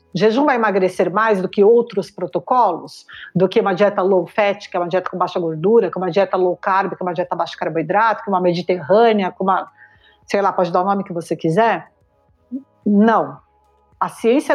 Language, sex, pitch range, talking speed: Portuguese, female, 200-275 Hz, 205 wpm